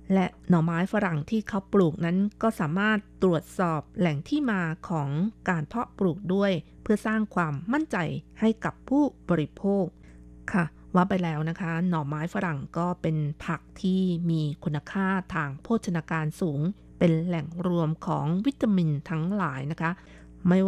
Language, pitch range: Thai, 160-195 Hz